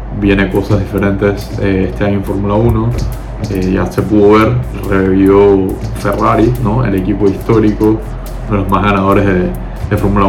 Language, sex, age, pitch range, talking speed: Spanish, male, 20-39, 95-105 Hz, 165 wpm